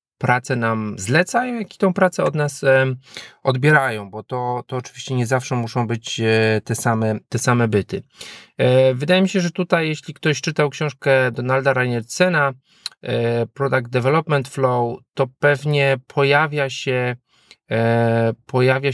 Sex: male